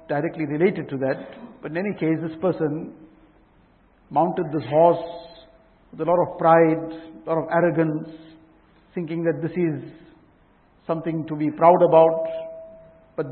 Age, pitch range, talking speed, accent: 50-69, 165-195 Hz, 145 wpm, Indian